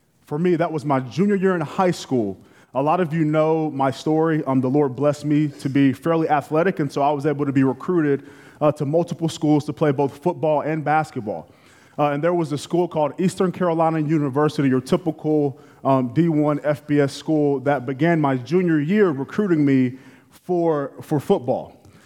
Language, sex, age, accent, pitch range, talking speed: English, male, 20-39, American, 140-165 Hz, 190 wpm